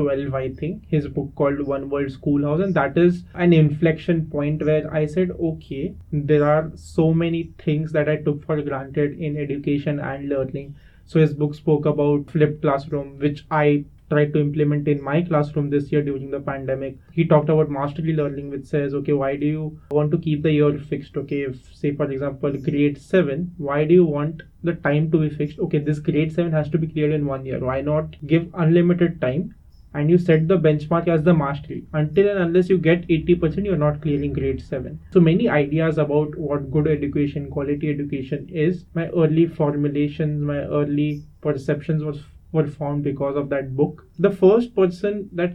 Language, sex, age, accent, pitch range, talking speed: English, male, 20-39, Indian, 145-160 Hz, 195 wpm